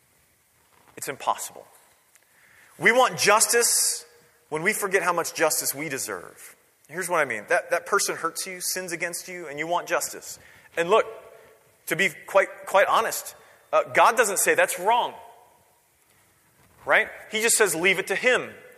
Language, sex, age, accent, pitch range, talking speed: English, male, 30-49, American, 165-230 Hz, 160 wpm